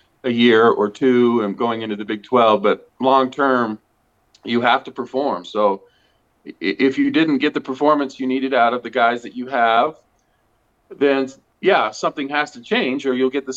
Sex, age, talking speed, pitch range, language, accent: male, 40-59, 185 wpm, 120-140 Hz, English, American